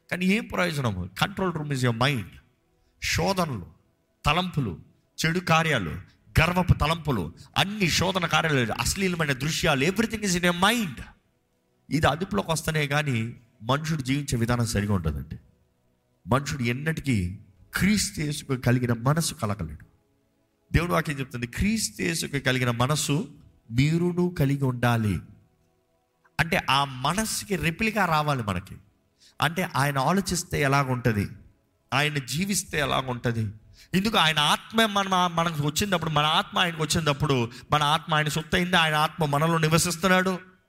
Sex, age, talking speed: male, 50-69, 120 wpm